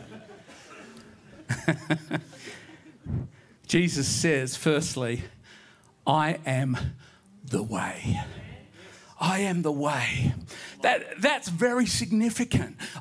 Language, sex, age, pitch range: English, male, 40-59, 195-275 Hz